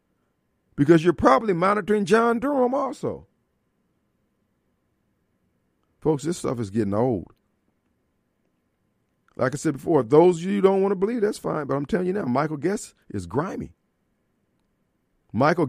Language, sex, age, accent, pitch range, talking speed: English, male, 50-69, American, 120-165 Hz, 140 wpm